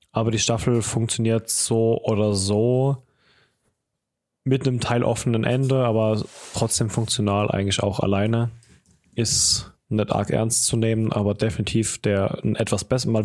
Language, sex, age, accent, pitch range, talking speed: German, male, 20-39, German, 105-120 Hz, 135 wpm